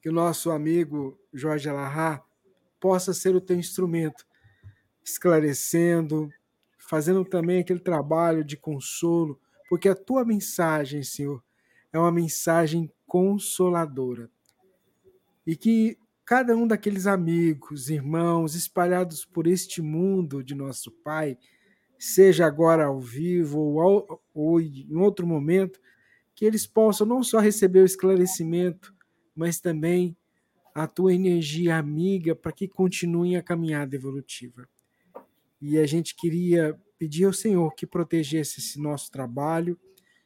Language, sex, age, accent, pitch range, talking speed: Portuguese, male, 50-69, Brazilian, 150-185 Hz, 120 wpm